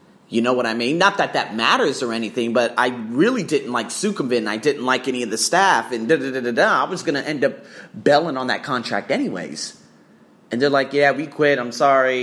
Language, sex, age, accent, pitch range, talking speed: English, male, 30-49, American, 125-200 Hz, 240 wpm